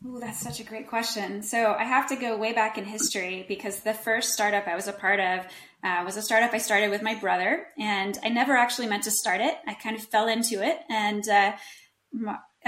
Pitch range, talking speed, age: 195-225 Hz, 225 wpm, 20-39